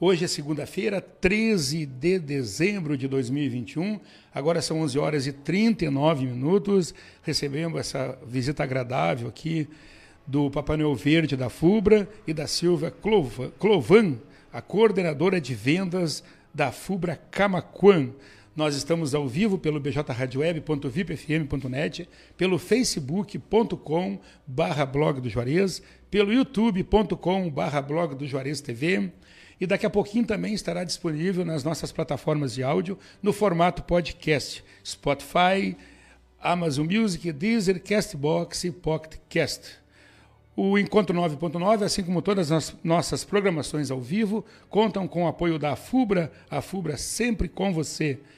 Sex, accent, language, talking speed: male, Brazilian, Portuguese, 120 wpm